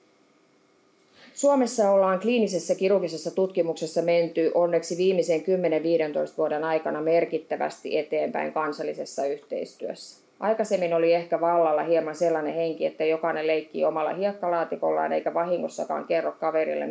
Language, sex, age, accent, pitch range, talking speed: Finnish, female, 20-39, native, 155-185 Hz, 110 wpm